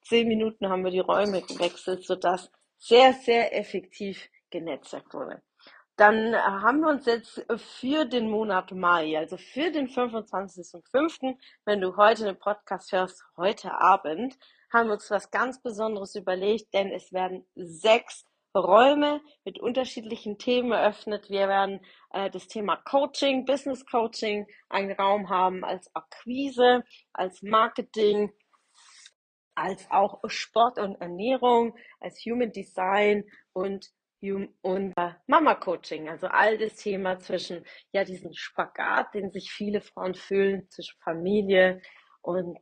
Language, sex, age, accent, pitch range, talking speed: German, female, 40-59, German, 185-235 Hz, 130 wpm